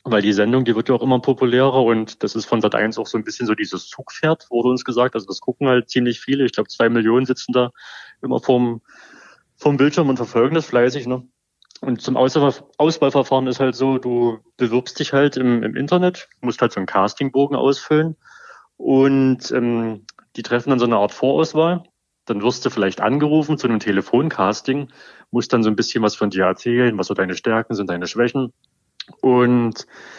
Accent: German